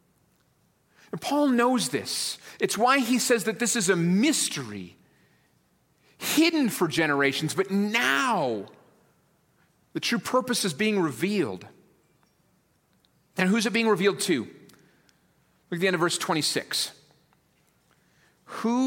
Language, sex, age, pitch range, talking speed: English, male, 40-59, 145-200 Hz, 120 wpm